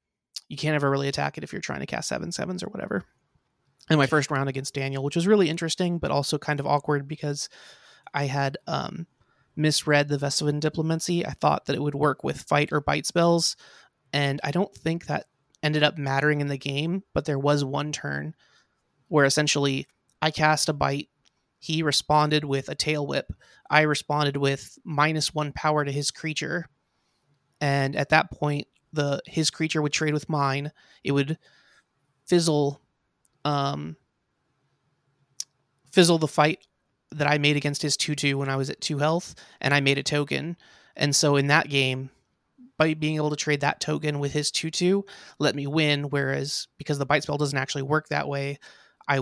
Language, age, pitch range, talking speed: English, 20-39, 140-155 Hz, 185 wpm